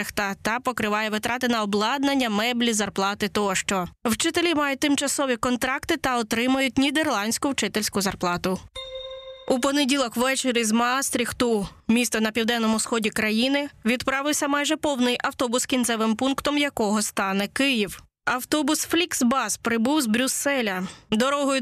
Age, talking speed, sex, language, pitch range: 20-39, 120 wpm, female, Ukrainian, 225-275 Hz